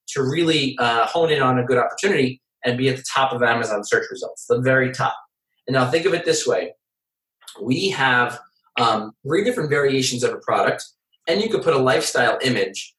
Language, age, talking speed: English, 30-49, 205 wpm